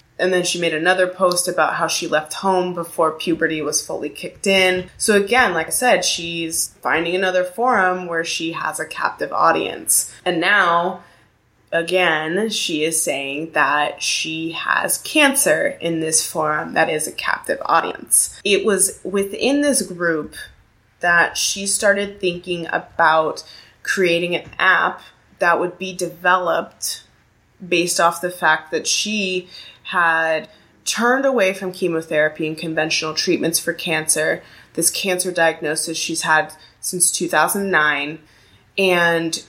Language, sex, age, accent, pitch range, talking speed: English, female, 20-39, American, 160-185 Hz, 140 wpm